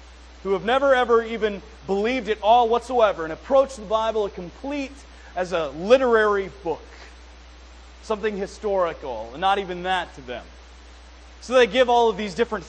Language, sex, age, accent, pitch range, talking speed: English, male, 30-49, American, 135-215 Hz, 155 wpm